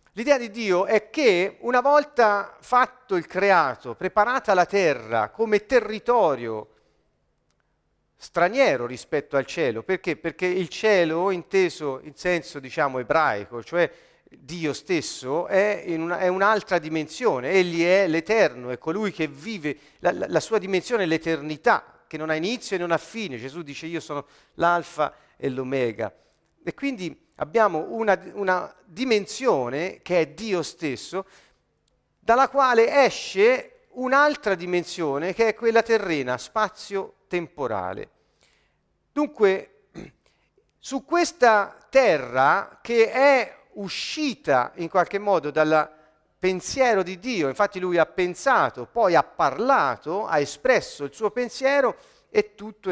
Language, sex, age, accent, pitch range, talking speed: Italian, male, 40-59, native, 160-230 Hz, 130 wpm